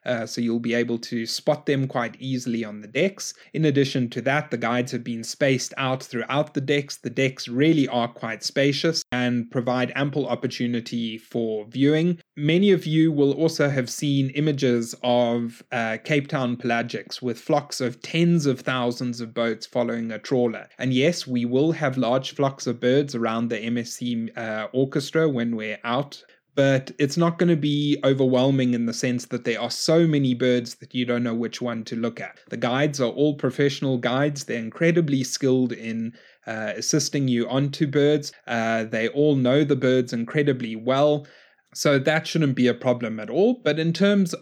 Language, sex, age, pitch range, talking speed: English, male, 20-39, 120-145 Hz, 185 wpm